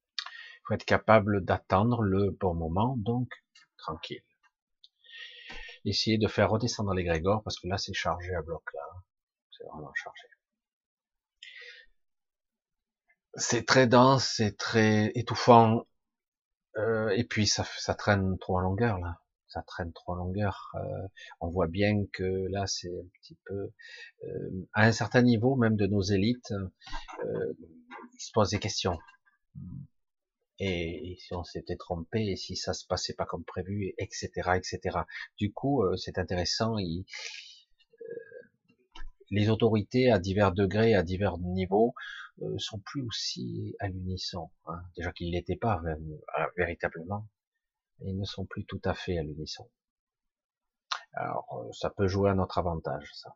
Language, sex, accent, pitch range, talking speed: French, male, French, 90-115 Hz, 145 wpm